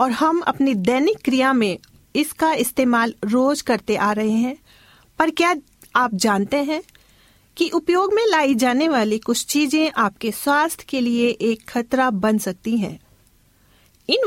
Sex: female